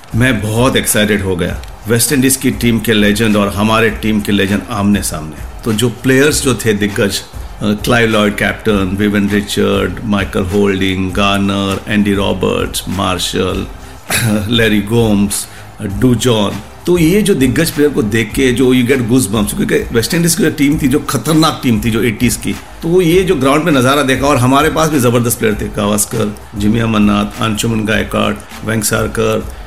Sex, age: male, 50-69